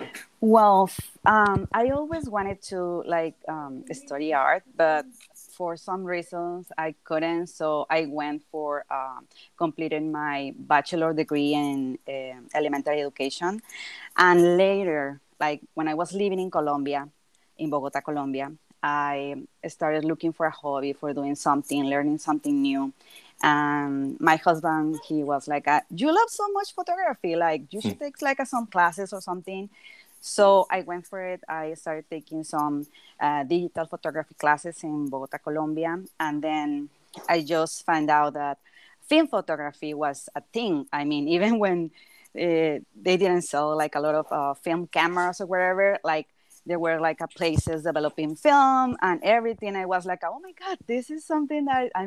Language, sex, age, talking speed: English, female, 20-39, 155 wpm